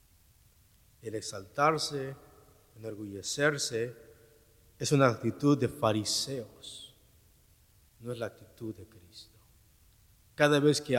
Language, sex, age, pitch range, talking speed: English, male, 50-69, 100-130 Hz, 95 wpm